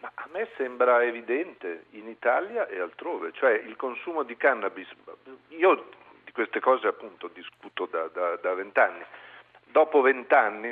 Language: Italian